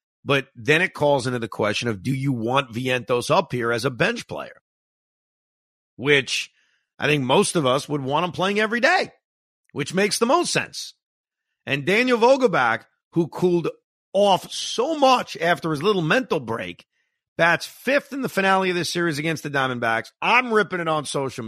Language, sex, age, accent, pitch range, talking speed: English, male, 50-69, American, 140-215 Hz, 180 wpm